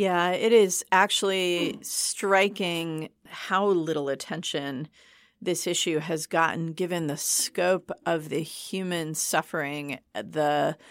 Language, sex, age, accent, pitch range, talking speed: English, female, 40-59, American, 155-190 Hz, 110 wpm